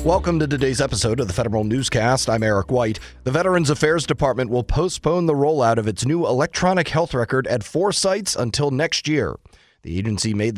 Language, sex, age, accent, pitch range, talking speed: English, male, 30-49, American, 115-165 Hz, 195 wpm